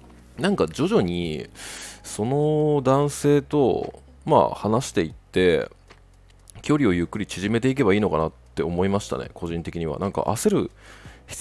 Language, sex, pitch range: Japanese, male, 85-120 Hz